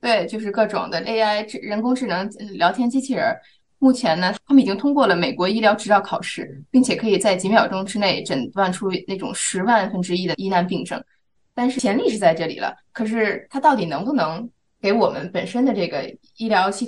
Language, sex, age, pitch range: Chinese, female, 20-39, 185-230 Hz